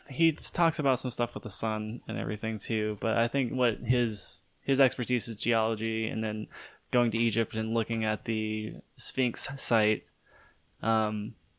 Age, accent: 10-29, American